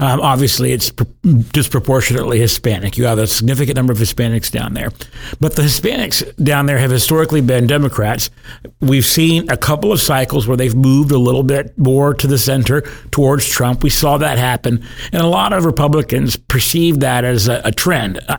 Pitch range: 120-145 Hz